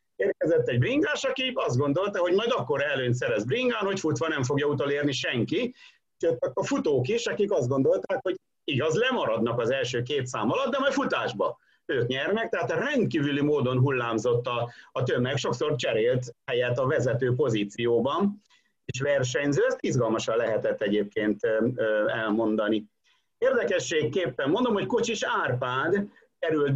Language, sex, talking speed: Hungarian, male, 145 wpm